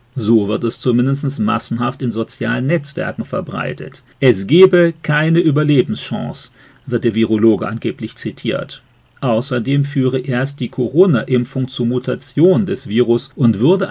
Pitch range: 120-145 Hz